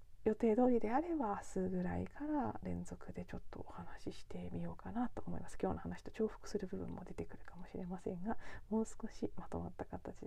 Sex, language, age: female, Japanese, 40-59